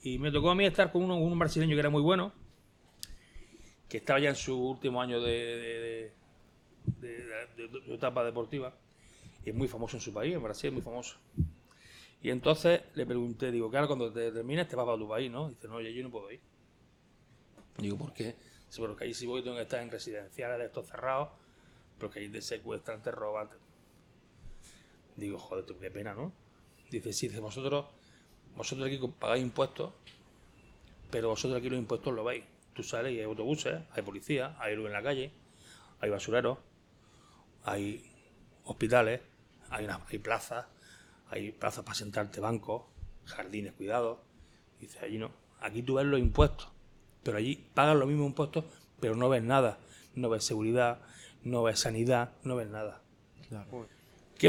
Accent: Spanish